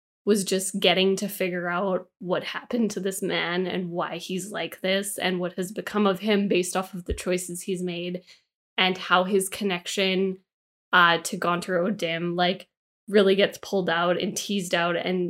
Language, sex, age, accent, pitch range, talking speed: English, female, 10-29, American, 180-210 Hz, 180 wpm